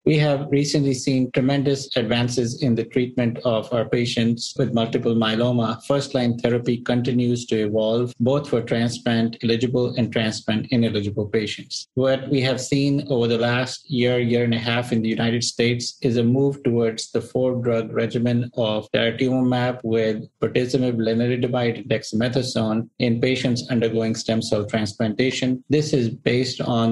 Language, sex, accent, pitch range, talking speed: English, male, Indian, 115-130 Hz, 145 wpm